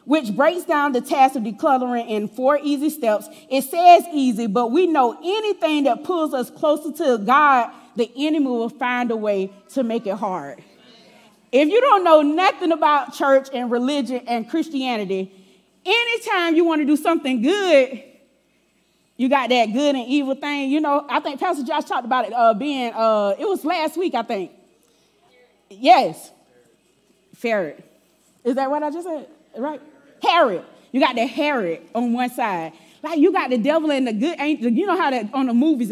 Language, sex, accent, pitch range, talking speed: English, female, American, 235-310 Hz, 185 wpm